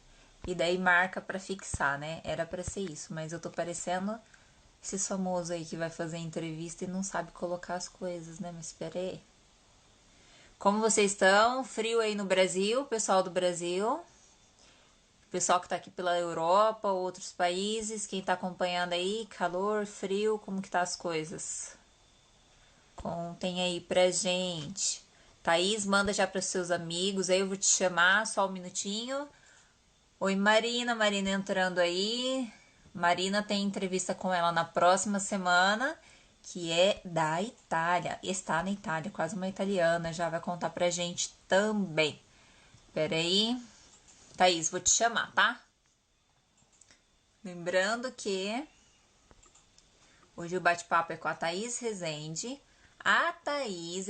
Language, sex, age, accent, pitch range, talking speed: Portuguese, female, 20-39, Brazilian, 175-205 Hz, 140 wpm